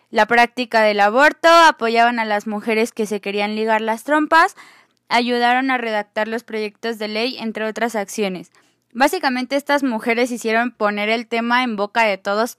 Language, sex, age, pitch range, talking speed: Spanish, female, 20-39, 205-245 Hz, 165 wpm